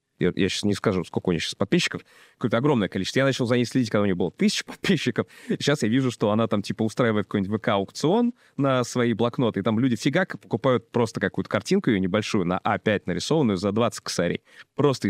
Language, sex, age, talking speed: Russian, male, 20-39, 210 wpm